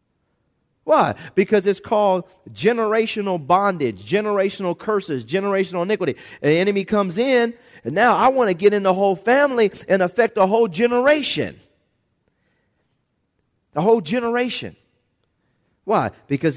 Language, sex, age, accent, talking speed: English, male, 40-59, American, 130 wpm